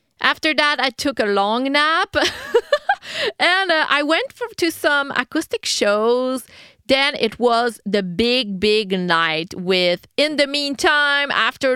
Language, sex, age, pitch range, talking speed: English, female, 30-49, 205-285 Hz, 145 wpm